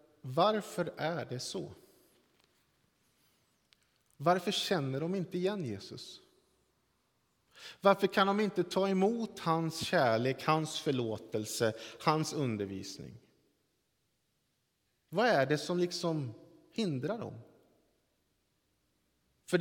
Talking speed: 90 wpm